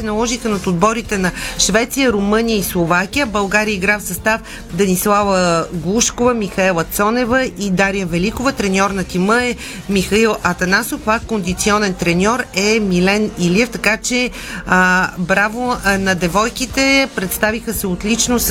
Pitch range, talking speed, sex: 190-230 Hz, 135 wpm, female